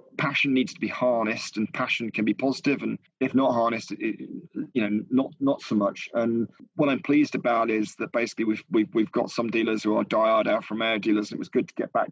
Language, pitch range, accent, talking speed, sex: English, 110-125 Hz, British, 235 wpm, male